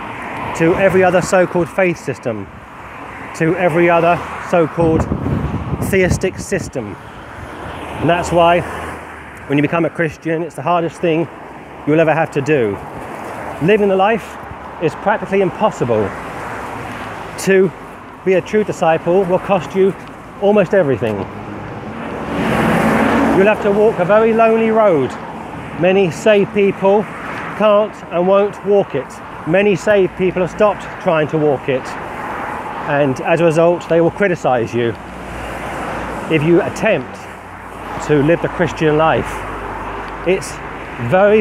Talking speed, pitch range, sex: 130 wpm, 155-195 Hz, male